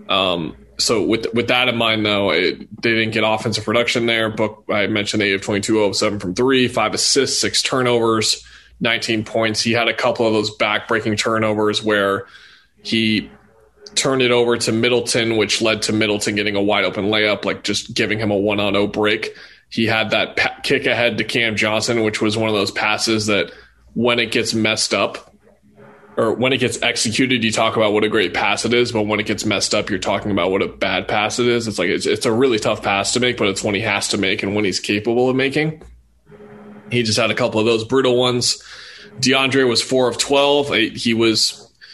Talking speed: 215 wpm